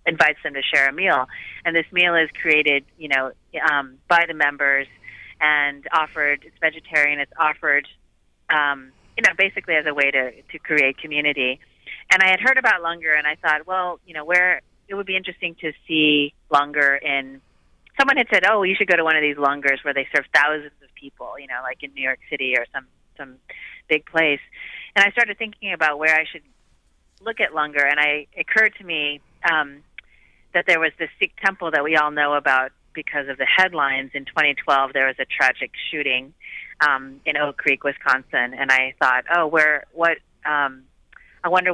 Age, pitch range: 30-49, 135-165 Hz